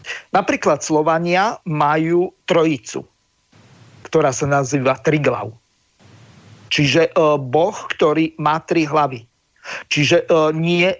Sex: male